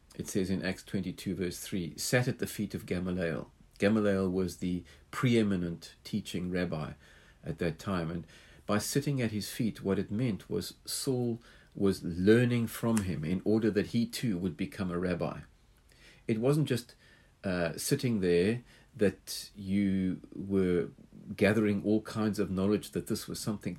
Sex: male